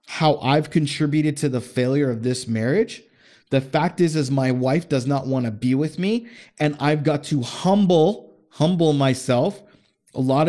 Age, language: 30-49, English